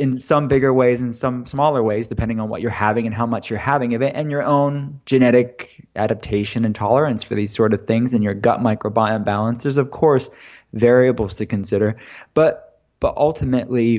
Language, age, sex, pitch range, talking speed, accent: English, 20-39, male, 115-130 Hz, 195 wpm, American